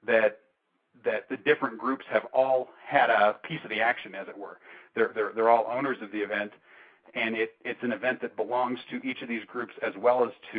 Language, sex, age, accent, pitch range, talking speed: English, male, 40-59, American, 115-140 Hz, 225 wpm